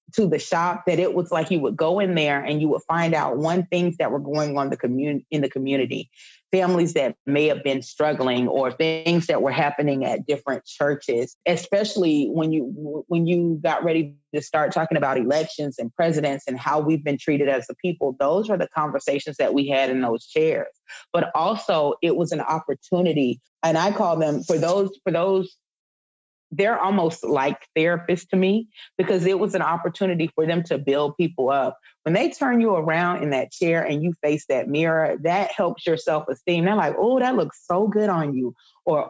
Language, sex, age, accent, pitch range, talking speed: English, female, 30-49, American, 145-185 Hz, 200 wpm